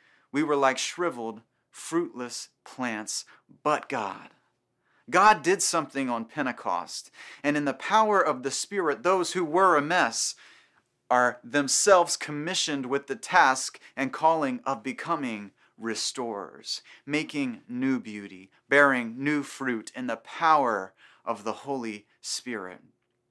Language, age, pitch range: English, 30-49, 125-160 Hz